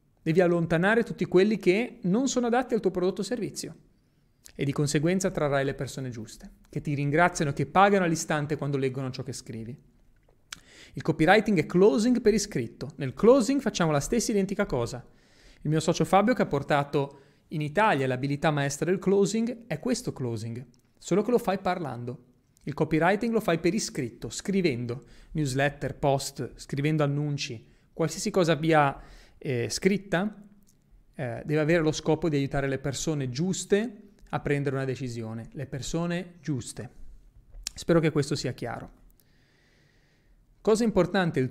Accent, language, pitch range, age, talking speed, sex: native, Italian, 135-185 Hz, 30-49, 150 wpm, male